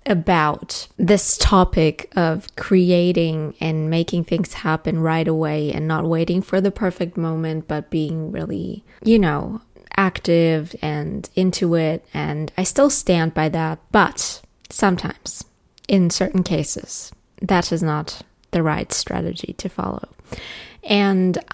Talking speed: 130 wpm